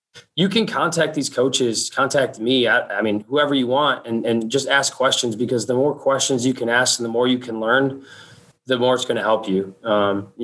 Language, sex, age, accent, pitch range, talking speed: English, male, 20-39, American, 120-135 Hz, 225 wpm